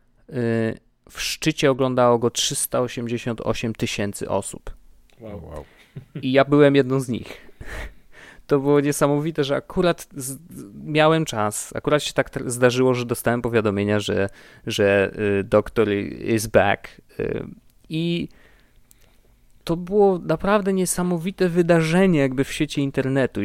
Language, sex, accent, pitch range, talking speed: Polish, male, native, 110-150 Hz, 105 wpm